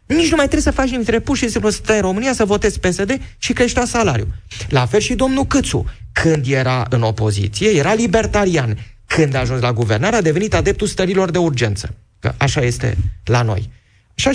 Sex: male